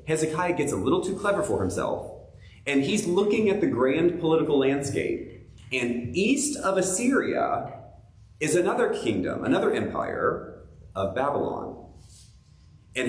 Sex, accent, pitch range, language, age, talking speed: male, American, 110-175 Hz, English, 30-49, 130 wpm